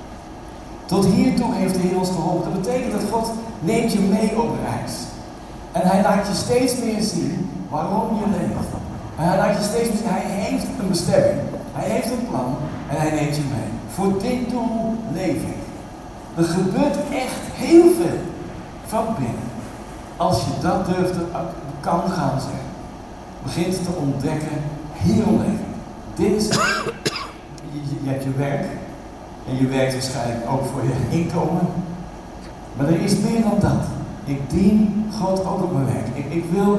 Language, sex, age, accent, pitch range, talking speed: Dutch, male, 60-79, Dutch, 140-200 Hz, 165 wpm